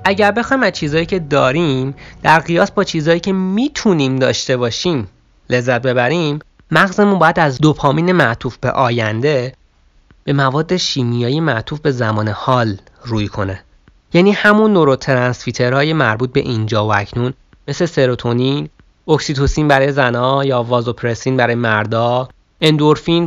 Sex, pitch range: male, 115-160 Hz